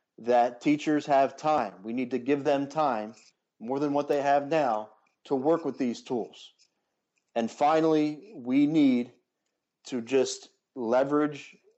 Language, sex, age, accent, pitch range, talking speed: English, male, 40-59, American, 115-135 Hz, 145 wpm